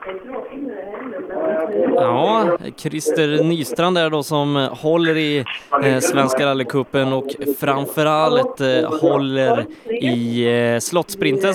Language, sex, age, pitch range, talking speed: Swedish, male, 20-39, 140-175 Hz, 95 wpm